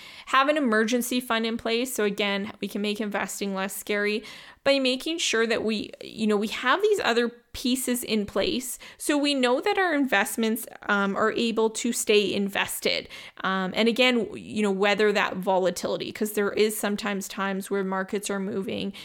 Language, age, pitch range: English, 20-39, 200-225 Hz